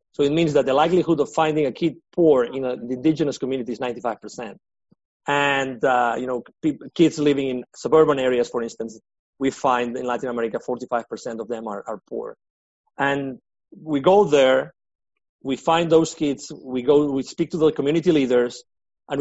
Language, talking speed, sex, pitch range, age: English, 185 wpm, male, 130-160 Hz, 40-59